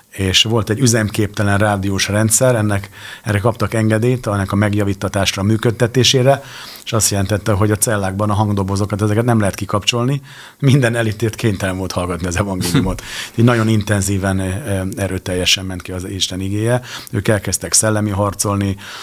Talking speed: 145 wpm